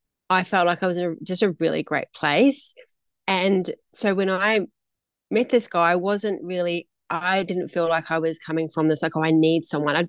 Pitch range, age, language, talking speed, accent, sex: 160-195 Hz, 30-49, English, 215 wpm, Australian, female